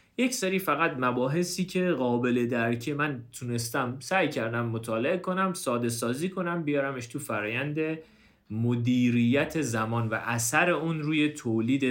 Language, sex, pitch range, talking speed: Persian, male, 110-165 Hz, 135 wpm